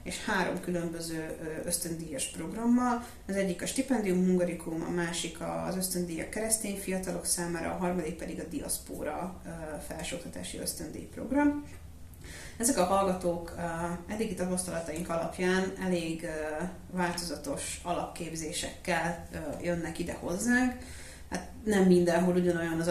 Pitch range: 165-185 Hz